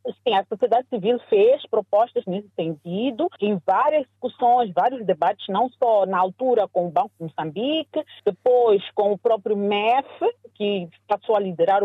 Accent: Brazilian